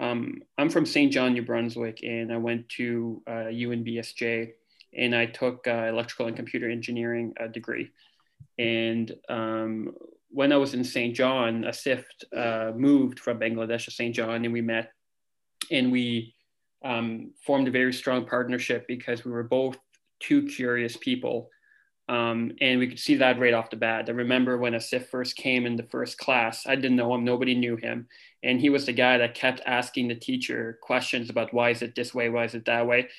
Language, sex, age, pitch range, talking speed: English, male, 20-39, 115-130 Hz, 195 wpm